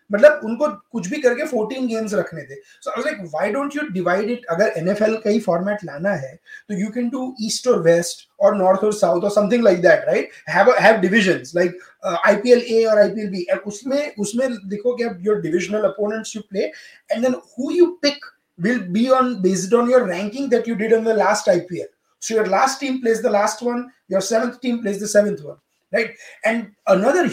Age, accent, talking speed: 20-39, Indian, 200 wpm